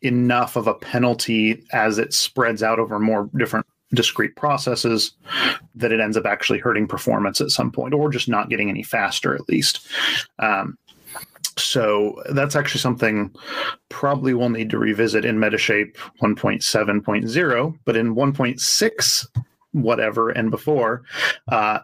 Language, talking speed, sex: English, 140 wpm, male